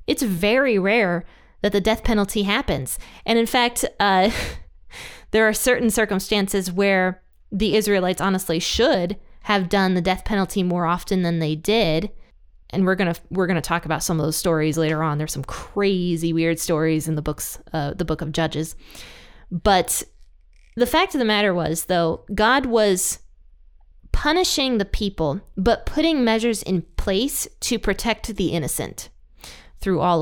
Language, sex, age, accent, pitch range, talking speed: English, female, 20-39, American, 170-220 Hz, 165 wpm